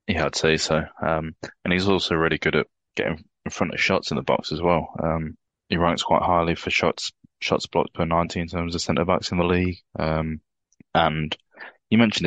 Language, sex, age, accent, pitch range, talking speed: English, male, 20-39, British, 80-95 Hz, 215 wpm